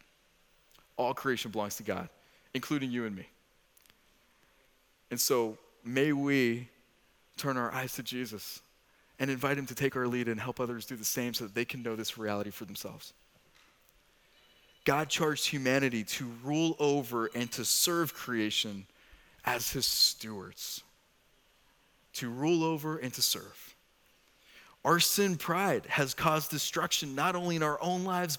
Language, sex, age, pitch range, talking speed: English, male, 30-49, 120-155 Hz, 150 wpm